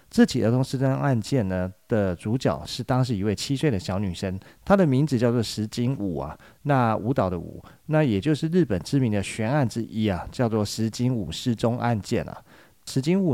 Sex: male